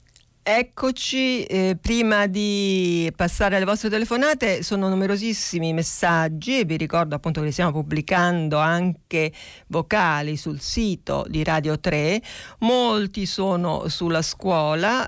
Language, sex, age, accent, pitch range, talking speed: Italian, female, 50-69, native, 160-210 Hz, 120 wpm